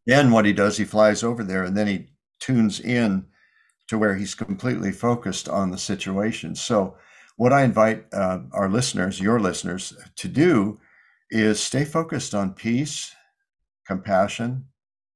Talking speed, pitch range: 150 wpm, 100-125 Hz